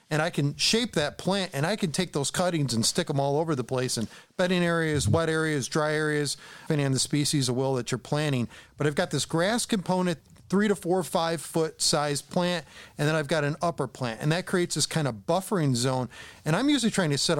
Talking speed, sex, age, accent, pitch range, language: 240 wpm, male, 40-59, American, 130-165 Hz, English